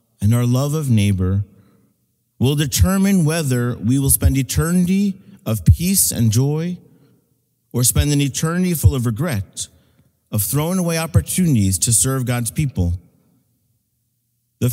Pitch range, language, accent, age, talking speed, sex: 110-140 Hz, English, American, 50-69, 130 wpm, male